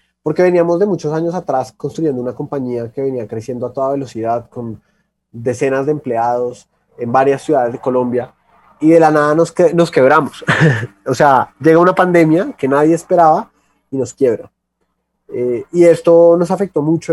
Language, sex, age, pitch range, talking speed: Spanish, male, 30-49, 125-160 Hz, 170 wpm